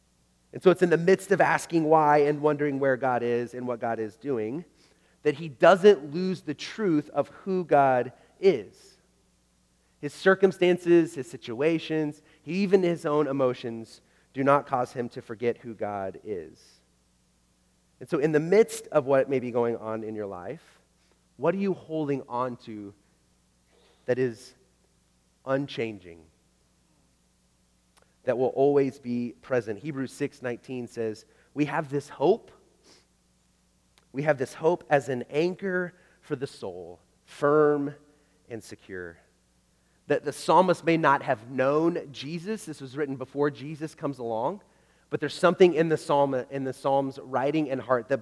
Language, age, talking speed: English, 30-49, 155 wpm